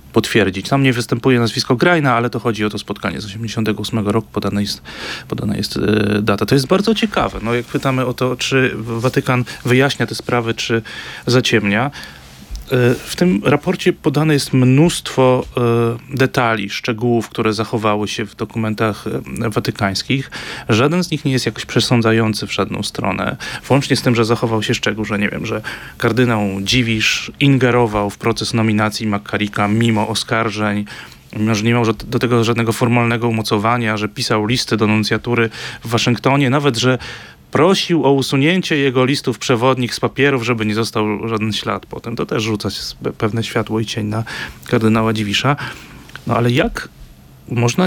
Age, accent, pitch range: 30-49, native, 110-130 Hz